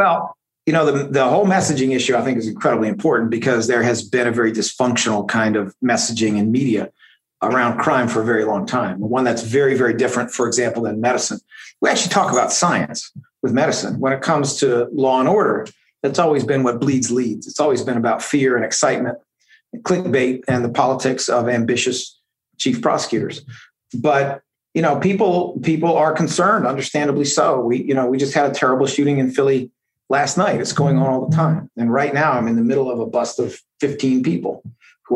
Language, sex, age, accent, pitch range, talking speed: English, male, 40-59, American, 125-145 Hz, 205 wpm